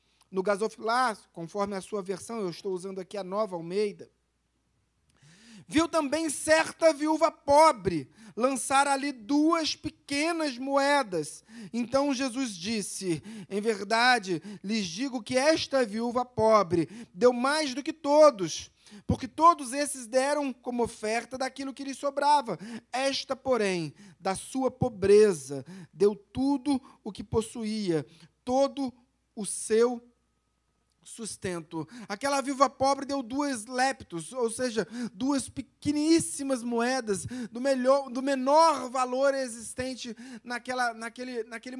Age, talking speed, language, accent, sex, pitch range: 40-59, 120 wpm, Portuguese, Brazilian, male, 215-280 Hz